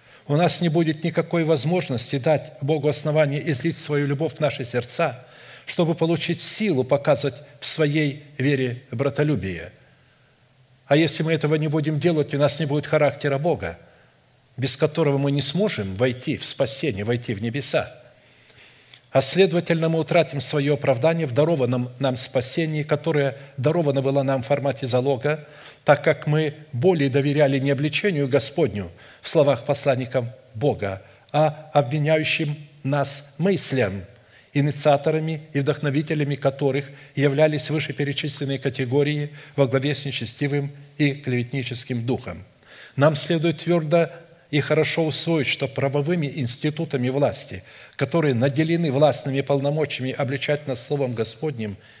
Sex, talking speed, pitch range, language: male, 130 wpm, 135-155 Hz, Russian